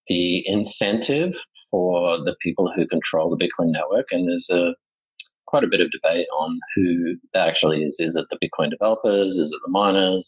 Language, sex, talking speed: English, male, 185 wpm